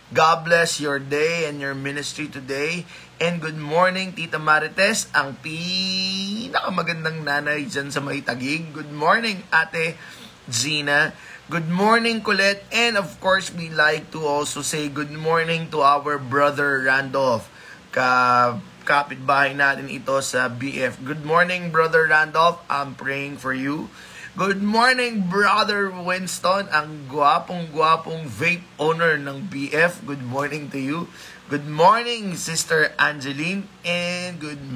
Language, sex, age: Filipino, male, 20-39